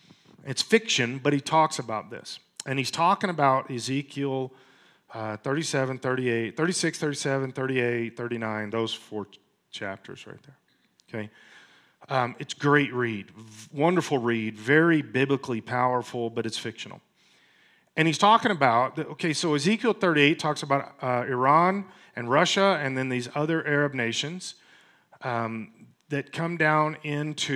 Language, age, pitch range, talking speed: English, 40-59, 120-155 Hz, 135 wpm